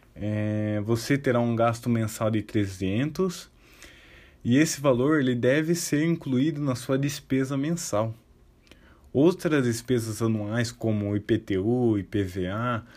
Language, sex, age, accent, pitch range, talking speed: Portuguese, male, 20-39, Brazilian, 105-125 Hz, 115 wpm